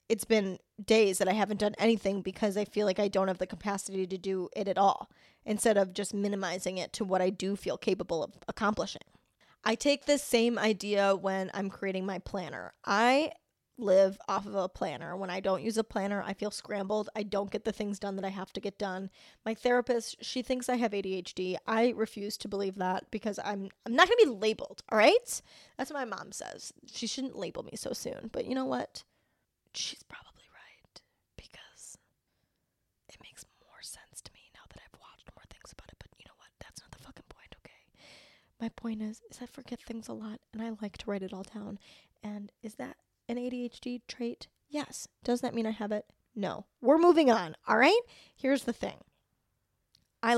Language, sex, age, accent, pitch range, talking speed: English, female, 10-29, American, 195-235 Hz, 210 wpm